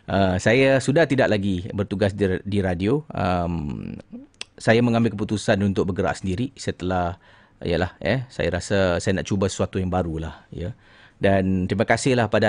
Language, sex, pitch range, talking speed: Malay, male, 100-140 Hz, 160 wpm